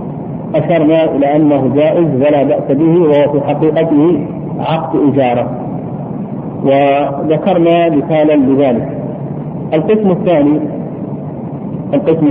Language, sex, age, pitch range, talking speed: Arabic, male, 50-69, 150-170 Hz, 90 wpm